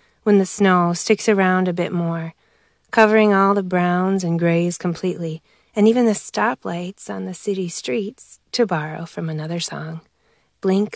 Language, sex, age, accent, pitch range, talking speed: English, female, 20-39, American, 170-195 Hz, 160 wpm